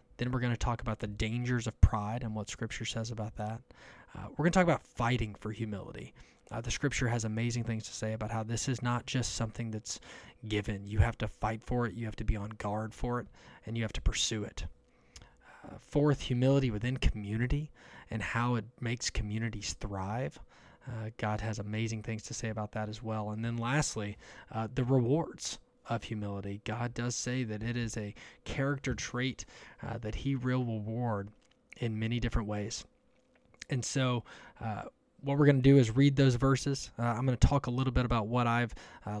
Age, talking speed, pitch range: 20-39, 205 wpm, 110-125 Hz